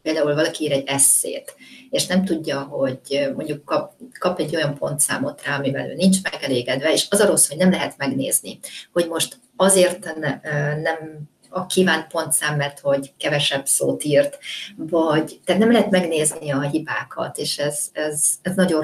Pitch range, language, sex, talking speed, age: 145-185 Hz, Hungarian, female, 160 wpm, 30-49